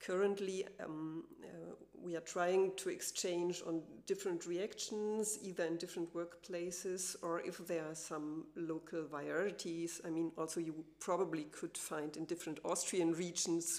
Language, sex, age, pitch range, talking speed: German, female, 50-69, 165-195 Hz, 145 wpm